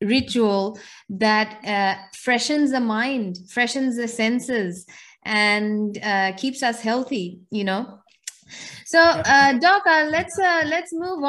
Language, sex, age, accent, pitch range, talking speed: English, female, 20-39, Indian, 205-255 Hz, 120 wpm